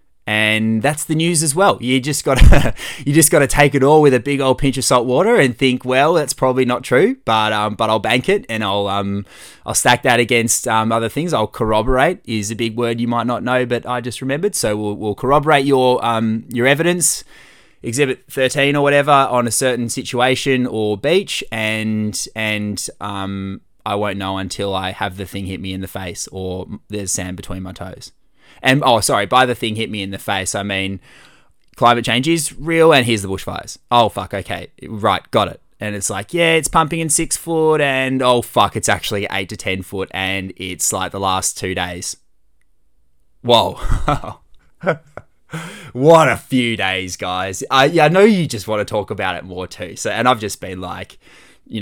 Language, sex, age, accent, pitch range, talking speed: English, male, 20-39, Australian, 100-135 Hz, 205 wpm